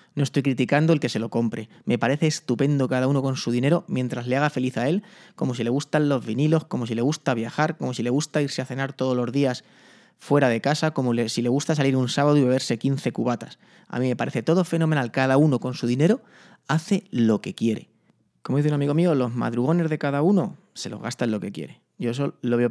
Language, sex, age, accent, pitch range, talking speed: Spanish, male, 30-49, Spanish, 120-145 Hz, 245 wpm